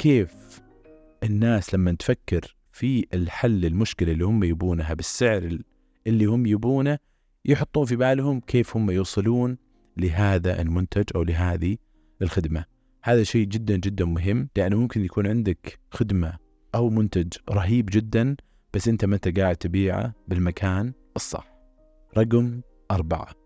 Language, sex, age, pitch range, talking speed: Arabic, male, 30-49, 90-115 Hz, 125 wpm